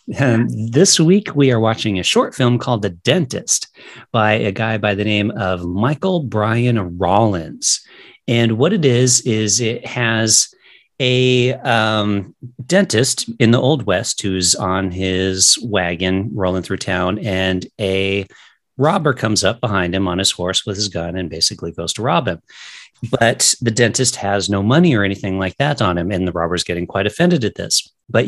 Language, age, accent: English, 40-59, American